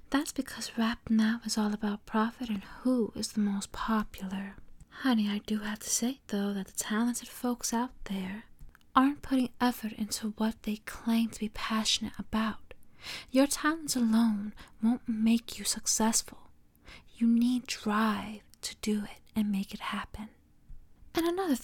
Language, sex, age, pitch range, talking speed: English, female, 20-39, 215-245 Hz, 160 wpm